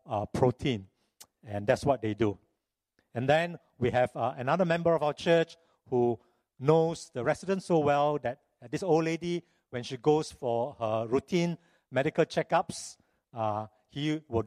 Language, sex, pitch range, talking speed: English, male, 115-150 Hz, 160 wpm